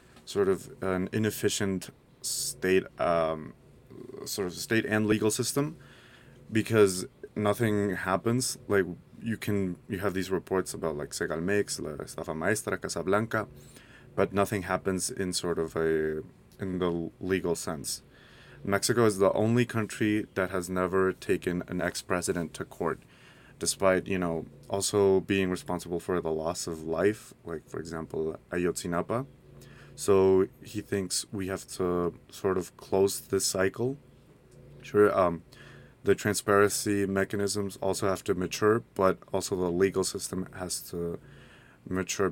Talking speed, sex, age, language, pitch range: 135 wpm, male, 30-49, English, 90-105 Hz